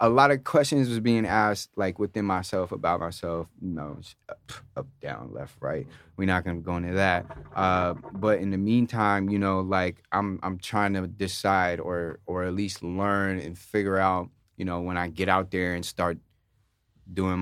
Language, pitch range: English, 90-110 Hz